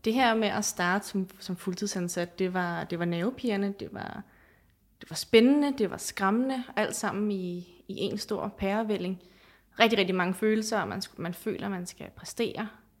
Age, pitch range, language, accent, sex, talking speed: 20-39, 180-210 Hz, Danish, native, female, 190 wpm